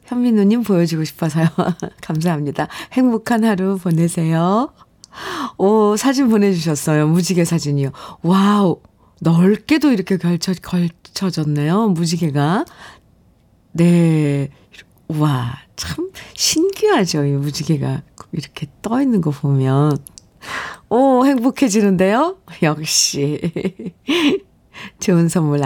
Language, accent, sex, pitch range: Korean, native, female, 160-235 Hz